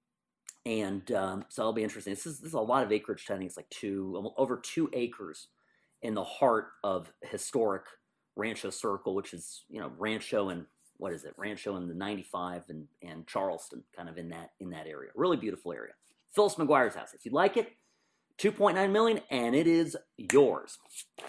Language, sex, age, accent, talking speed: English, male, 40-59, American, 190 wpm